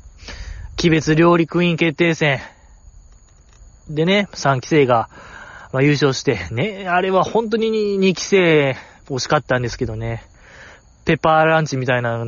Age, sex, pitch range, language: 20-39, male, 130-180 Hz, Japanese